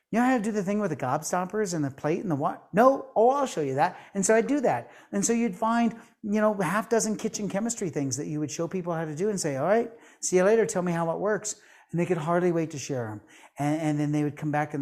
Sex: male